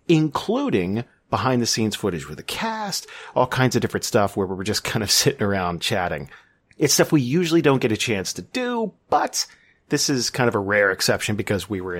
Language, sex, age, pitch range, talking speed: English, male, 40-59, 100-135 Hz, 205 wpm